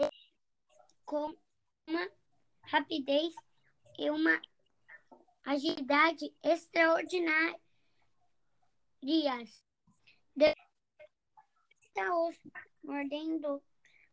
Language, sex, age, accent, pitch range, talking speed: Portuguese, male, 20-39, Brazilian, 275-330 Hz, 40 wpm